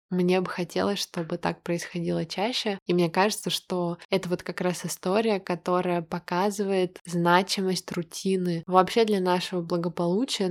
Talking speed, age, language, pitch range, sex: 135 wpm, 20-39, Russian, 175-190 Hz, female